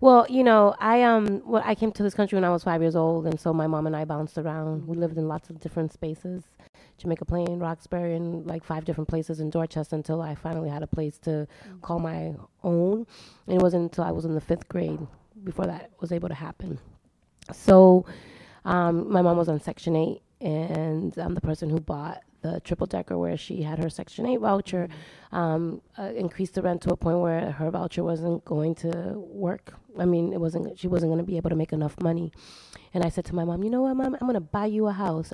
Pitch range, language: 165-190 Hz, English